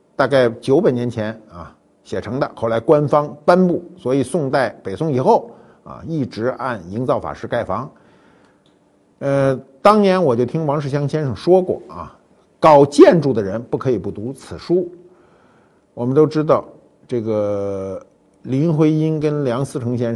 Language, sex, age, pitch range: Chinese, male, 50-69, 105-145 Hz